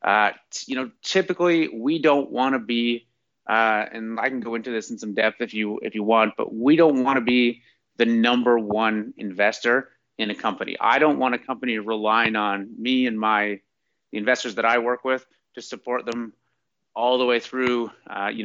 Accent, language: American, English